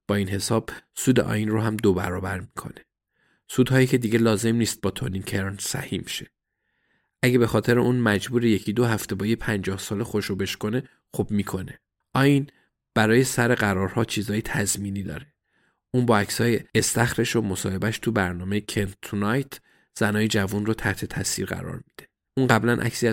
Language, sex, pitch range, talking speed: Persian, male, 100-120 Hz, 160 wpm